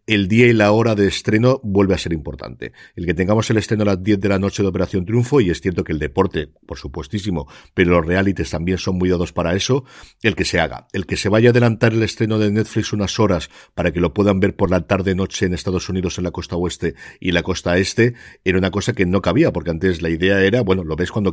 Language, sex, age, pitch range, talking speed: Spanish, male, 50-69, 85-100 Hz, 260 wpm